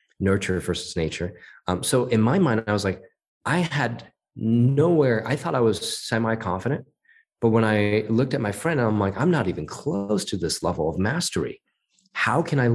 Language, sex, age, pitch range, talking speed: English, male, 30-49, 95-125 Hz, 195 wpm